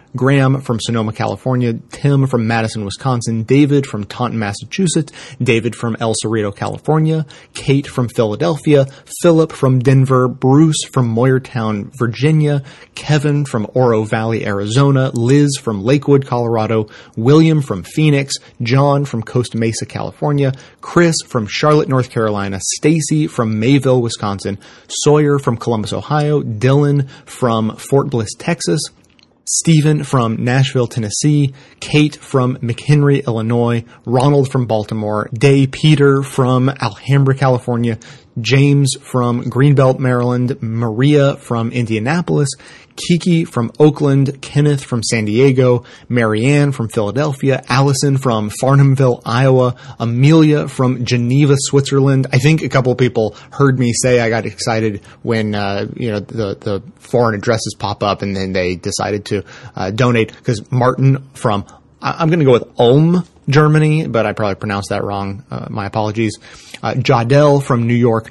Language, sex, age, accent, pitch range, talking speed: English, male, 30-49, American, 115-140 Hz, 140 wpm